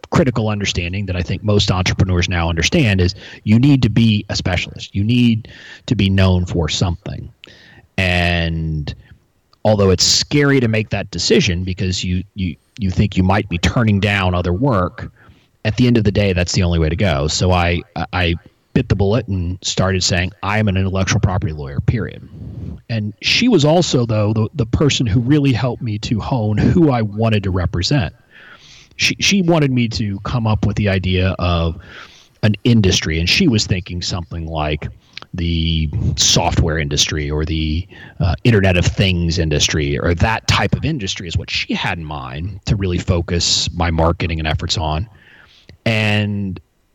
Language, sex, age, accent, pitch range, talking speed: English, male, 30-49, American, 90-115 Hz, 180 wpm